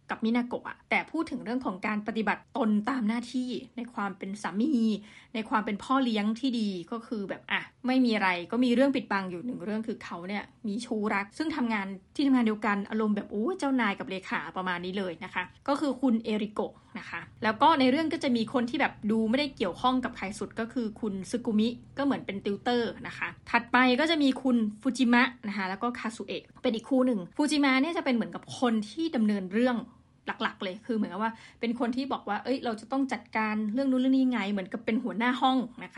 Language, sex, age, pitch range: Thai, female, 20-39, 210-260 Hz